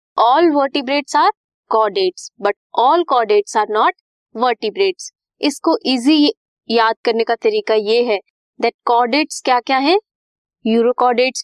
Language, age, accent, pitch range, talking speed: Hindi, 20-39, native, 230-320 Hz, 110 wpm